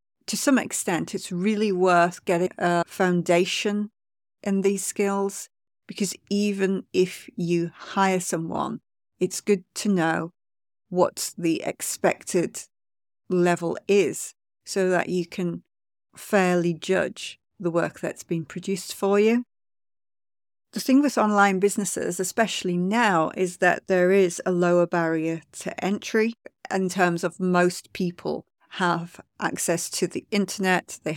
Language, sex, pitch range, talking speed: English, female, 170-195 Hz, 130 wpm